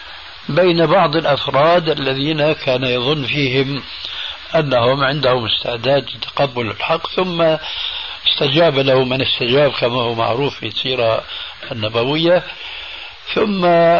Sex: male